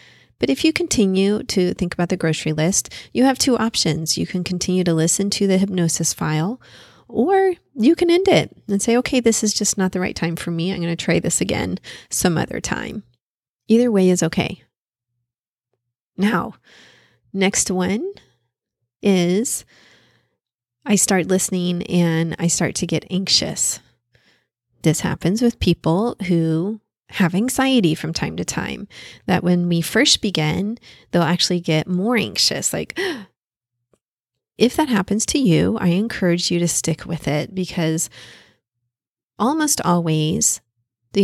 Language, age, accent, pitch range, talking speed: English, 30-49, American, 160-200 Hz, 150 wpm